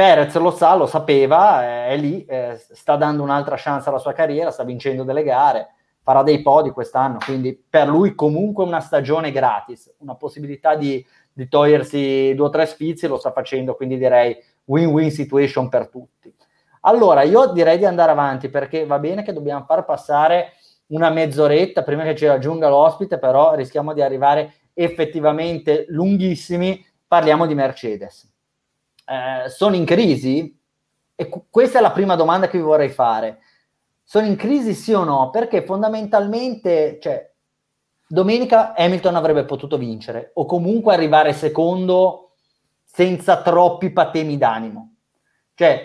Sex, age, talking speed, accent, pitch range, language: male, 30-49, 150 wpm, native, 140-180 Hz, Italian